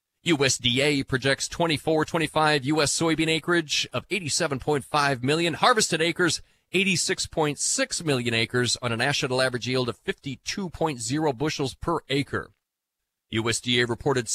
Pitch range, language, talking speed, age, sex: 130-175 Hz, English, 110 wpm, 40-59, male